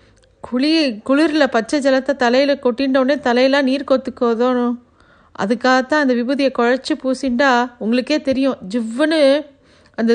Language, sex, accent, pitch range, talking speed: Tamil, female, native, 225-270 Hz, 105 wpm